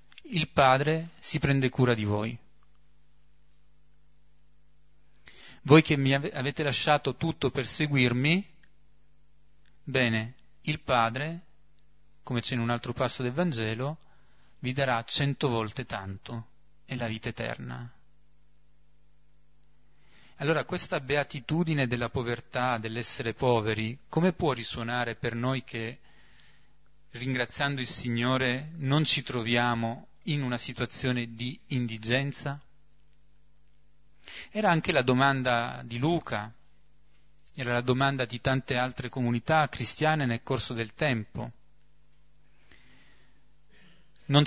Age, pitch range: 30-49, 115-140 Hz